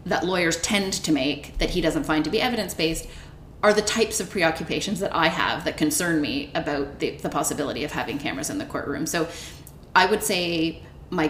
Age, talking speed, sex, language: 30-49, 200 wpm, female, English